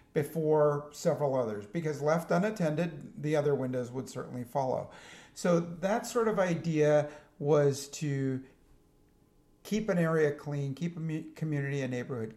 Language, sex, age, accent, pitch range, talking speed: English, male, 50-69, American, 130-160 Hz, 135 wpm